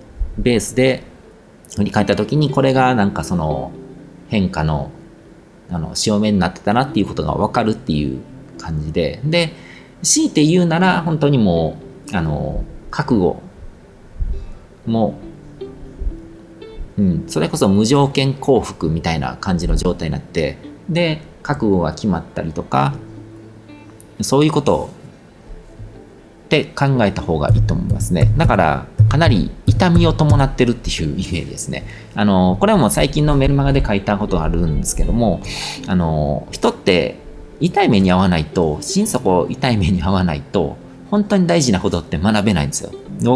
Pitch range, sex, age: 90-140 Hz, male, 40-59